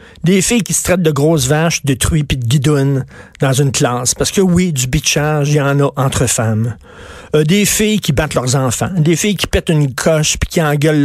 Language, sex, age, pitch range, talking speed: French, male, 50-69, 130-175 Hz, 235 wpm